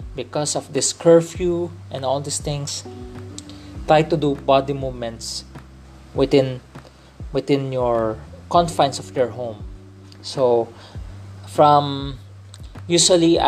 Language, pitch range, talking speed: English, 100-160 Hz, 100 wpm